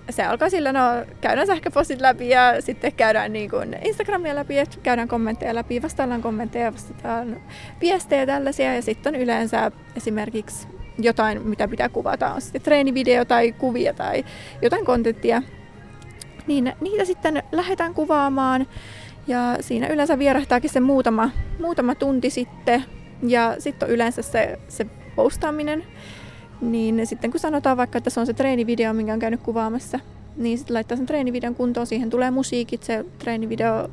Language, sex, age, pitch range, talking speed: Finnish, female, 20-39, 230-270 Hz, 155 wpm